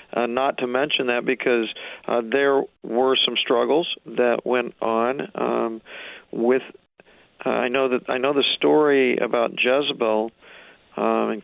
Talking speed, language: 150 wpm, English